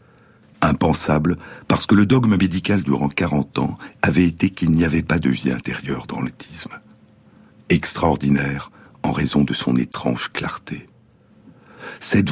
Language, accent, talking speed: French, French, 135 wpm